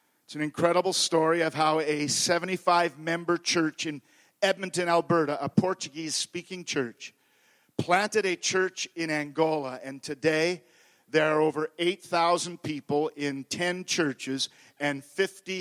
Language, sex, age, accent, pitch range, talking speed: English, male, 50-69, American, 150-185 Hz, 120 wpm